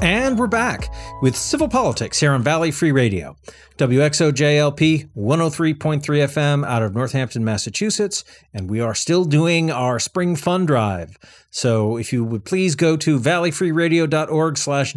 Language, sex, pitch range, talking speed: English, male, 115-155 Hz, 180 wpm